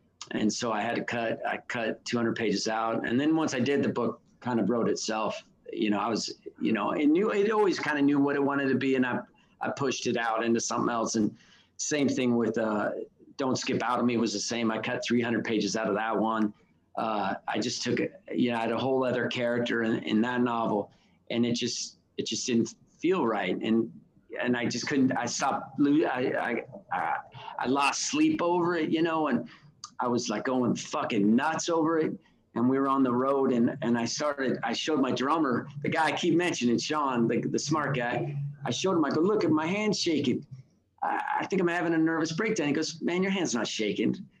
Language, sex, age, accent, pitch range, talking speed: English, male, 40-59, American, 115-160 Hz, 230 wpm